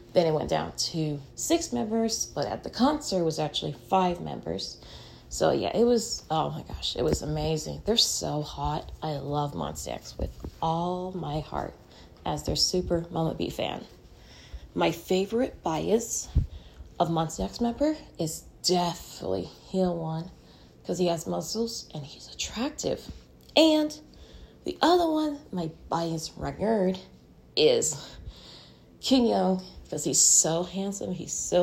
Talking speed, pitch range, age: 145 wpm, 155-230 Hz, 20-39